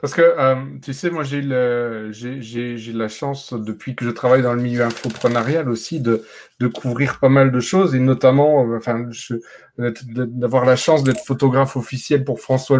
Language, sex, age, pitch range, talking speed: French, male, 40-59, 125-155 Hz, 195 wpm